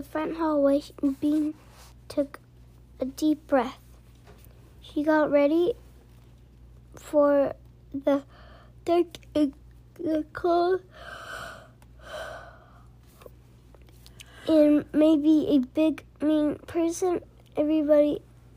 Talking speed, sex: 70 wpm, female